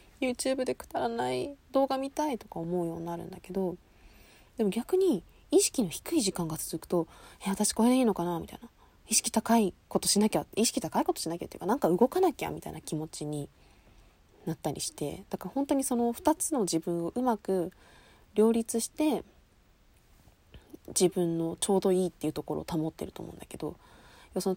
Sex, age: female, 20-39